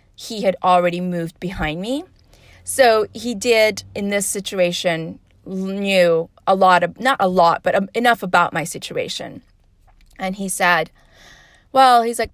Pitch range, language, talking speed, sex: 170-230 Hz, English, 145 wpm, female